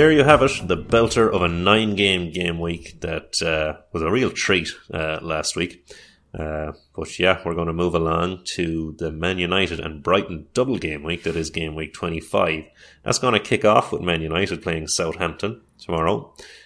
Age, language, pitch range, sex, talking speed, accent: 30-49, English, 80-90 Hz, male, 190 wpm, Irish